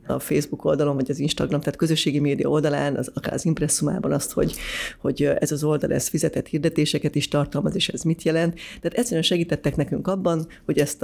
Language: Hungarian